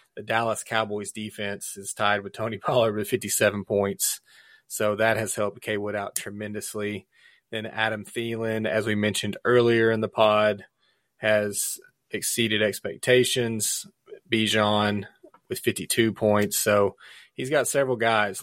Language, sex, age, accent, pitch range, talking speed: English, male, 30-49, American, 105-115 Hz, 130 wpm